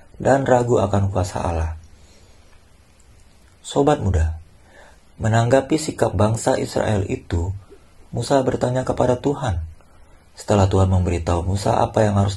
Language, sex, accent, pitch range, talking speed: Indonesian, male, native, 85-115 Hz, 110 wpm